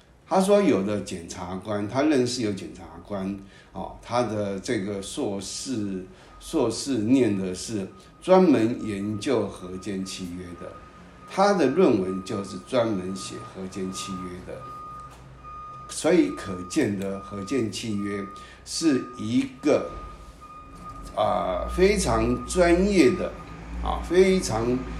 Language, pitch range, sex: Chinese, 95-125 Hz, male